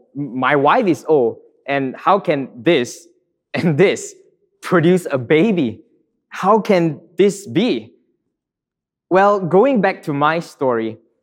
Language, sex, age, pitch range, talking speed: English, male, 20-39, 135-180 Hz, 125 wpm